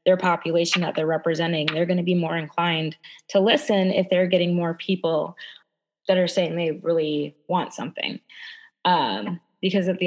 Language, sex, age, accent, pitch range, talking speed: English, female, 20-39, American, 160-185 Hz, 175 wpm